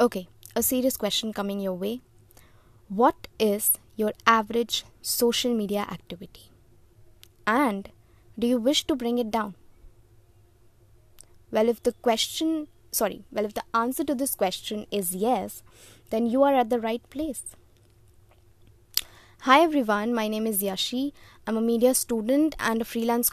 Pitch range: 195-245 Hz